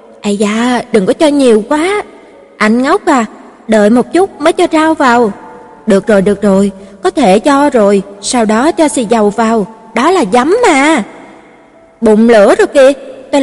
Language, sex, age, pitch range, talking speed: Vietnamese, female, 20-39, 215-295 Hz, 180 wpm